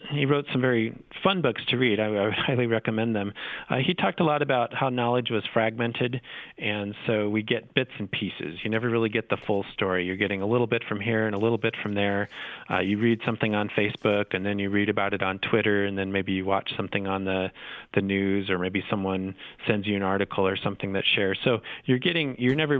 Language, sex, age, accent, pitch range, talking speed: English, male, 40-59, American, 95-115 Hz, 235 wpm